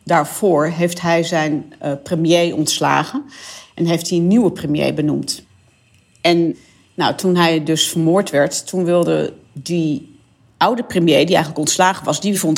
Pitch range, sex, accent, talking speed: 150-180 Hz, female, Dutch, 145 wpm